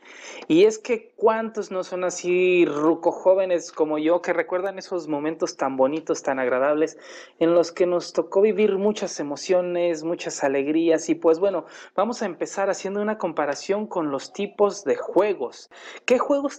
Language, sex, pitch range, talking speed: Spanish, male, 160-195 Hz, 165 wpm